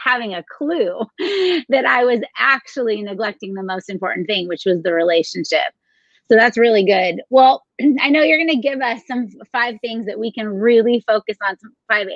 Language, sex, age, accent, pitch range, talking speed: English, female, 30-49, American, 200-265 Hz, 190 wpm